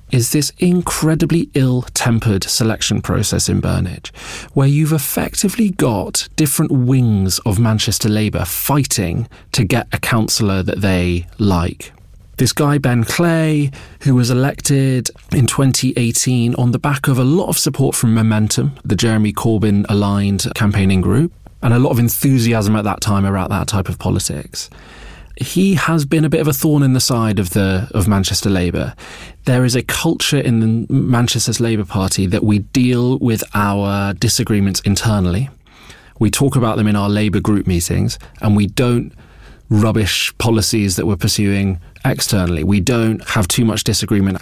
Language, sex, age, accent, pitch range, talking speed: English, male, 30-49, British, 100-130 Hz, 160 wpm